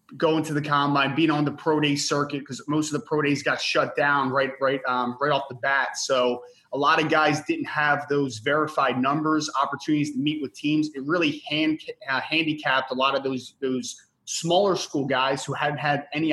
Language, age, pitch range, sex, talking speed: English, 20-39, 135-155 Hz, male, 215 wpm